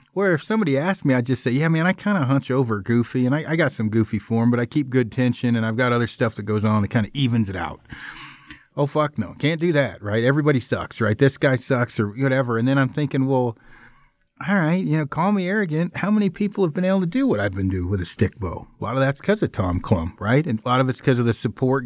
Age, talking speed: 40-59, 285 wpm